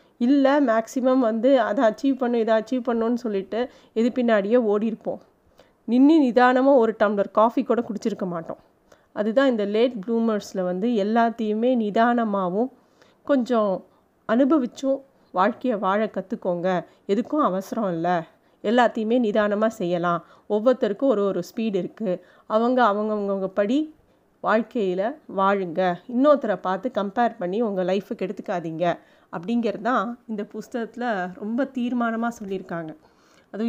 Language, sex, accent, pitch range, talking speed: Tamil, female, native, 205-250 Hz, 115 wpm